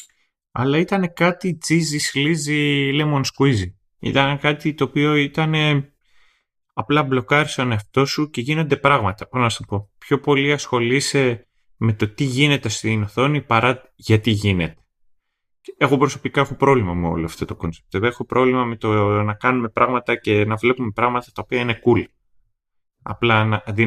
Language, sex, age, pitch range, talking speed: Greek, male, 30-49, 105-140 Hz, 160 wpm